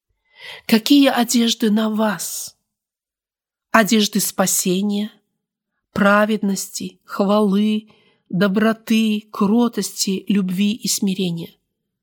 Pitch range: 185-230 Hz